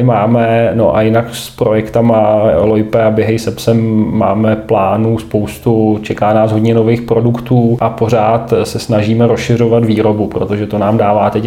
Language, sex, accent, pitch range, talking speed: Czech, male, native, 110-115 Hz, 155 wpm